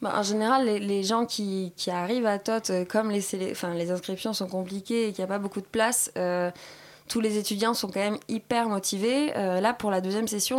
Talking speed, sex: 240 wpm, female